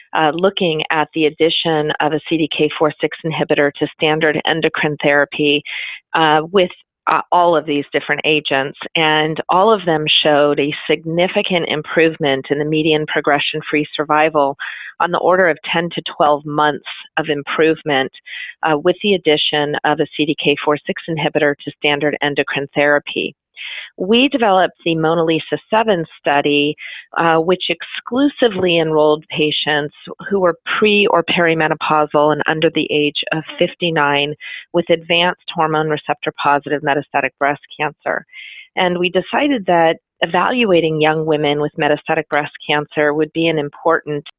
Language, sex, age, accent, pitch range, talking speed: English, female, 40-59, American, 150-170 Hz, 140 wpm